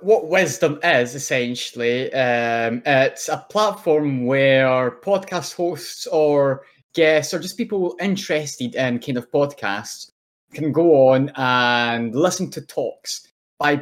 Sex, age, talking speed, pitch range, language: male, 20-39, 125 wpm, 130-160 Hz, English